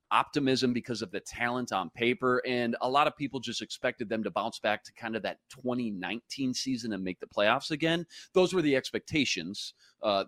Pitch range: 115-155 Hz